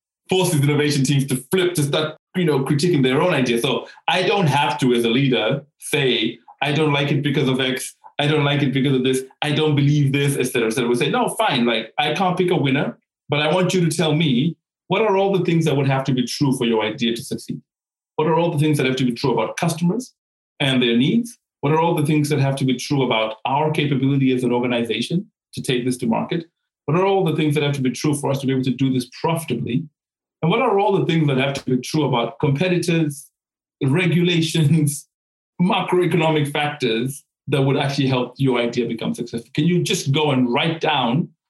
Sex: male